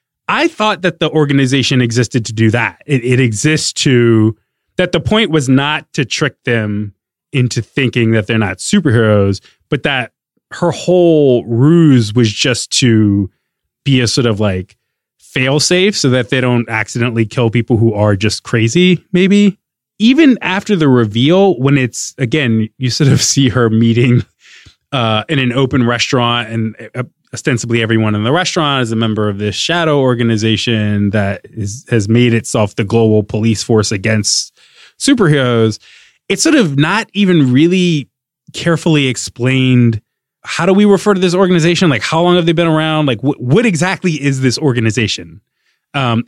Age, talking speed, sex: 20-39, 165 wpm, male